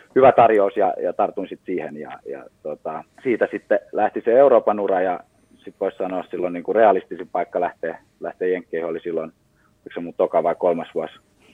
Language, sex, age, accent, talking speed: Finnish, male, 30-49, native, 200 wpm